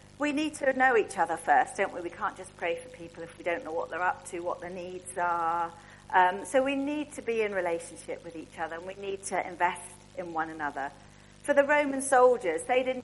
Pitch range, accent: 180-255 Hz, British